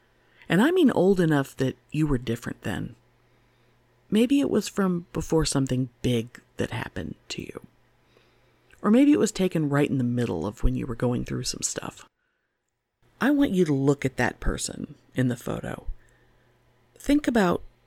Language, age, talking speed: English, 50-69, 170 wpm